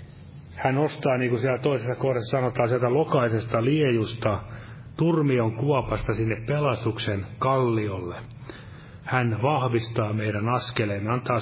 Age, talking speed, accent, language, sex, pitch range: 30-49, 115 wpm, native, Finnish, male, 115-135 Hz